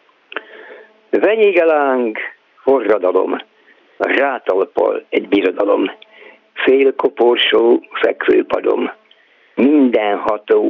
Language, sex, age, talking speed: Hungarian, male, 60-79, 60 wpm